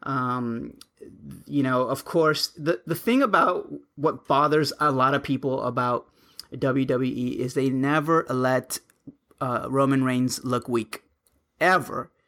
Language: English